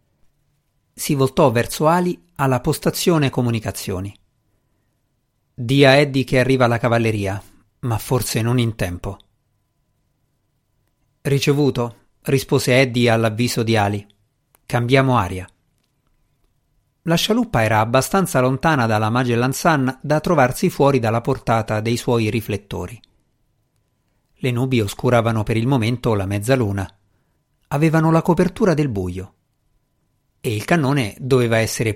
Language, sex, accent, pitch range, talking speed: Italian, male, native, 110-140 Hz, 115 wpm